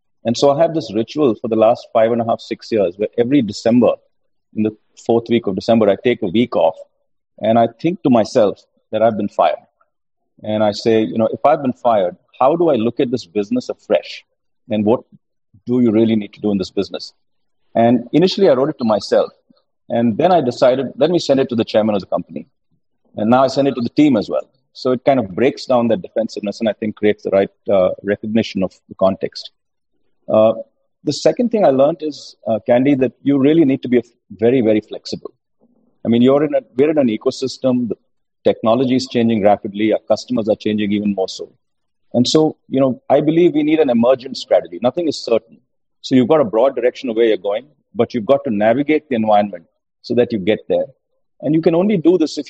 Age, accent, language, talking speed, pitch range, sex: 40-59, Indian, English, 225 wpm, 110-150 Hz, male